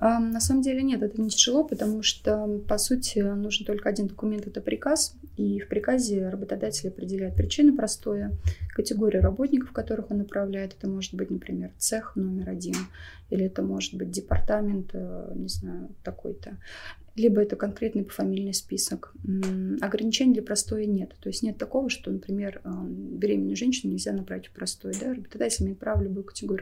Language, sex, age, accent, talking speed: Russian, female, 20-39, native, 160 wpm